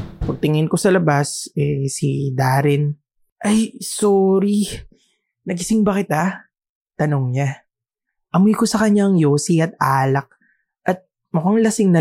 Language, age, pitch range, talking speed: English, 20-39, 145-205 Hz, 125 wpm